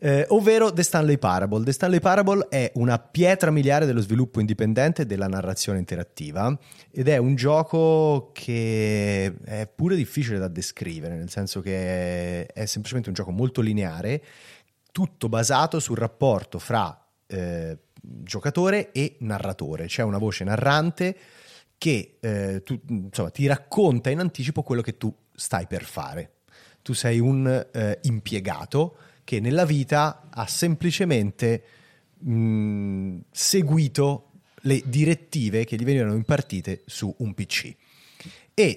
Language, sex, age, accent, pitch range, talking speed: Italian, male, 30-49, native, 100-150 Hz, 130 wpm